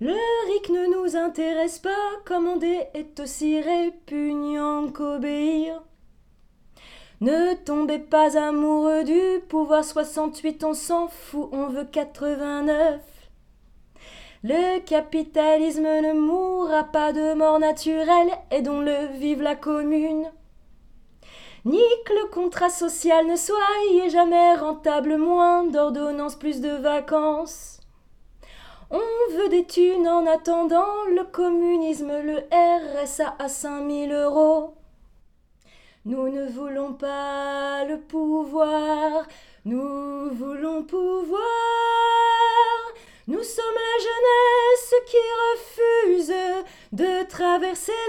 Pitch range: 300-355 Hz